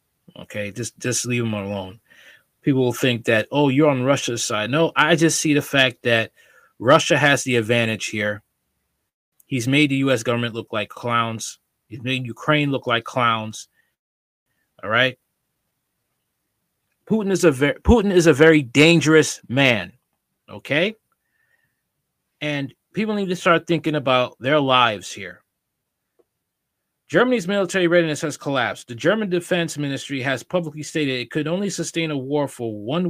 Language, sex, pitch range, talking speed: English, male, 120-155 Hz, 150 wpm